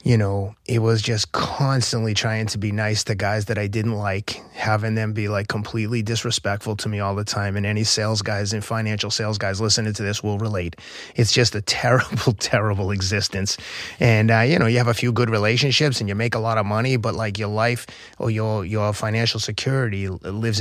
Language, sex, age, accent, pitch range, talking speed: English, male, 30-49, American, 105-115 Hz, 215 wpm